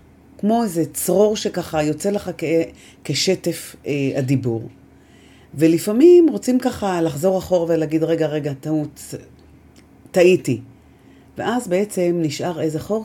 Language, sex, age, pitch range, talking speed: Hebrew, female, 40-59, 130-185 Hz, 115 wpm